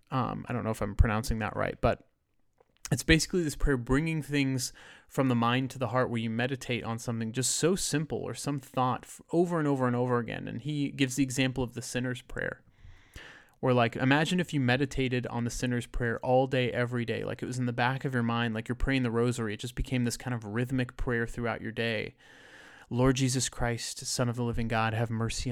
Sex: male